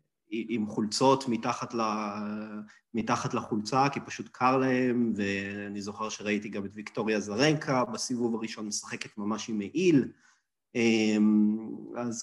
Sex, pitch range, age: male, 110-140 Hz, 30-49